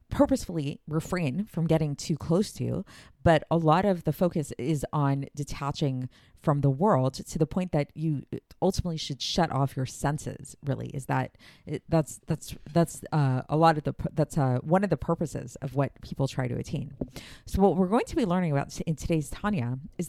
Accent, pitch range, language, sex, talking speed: American, 135-170 Hz, English, female, 195 wpm